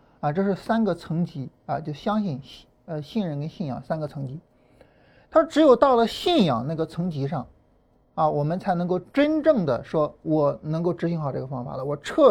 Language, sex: Chinese, male